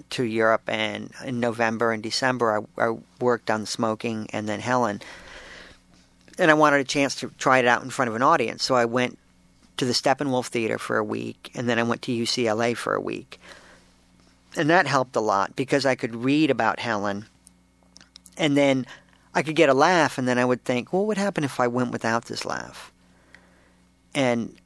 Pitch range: 115-140 Hz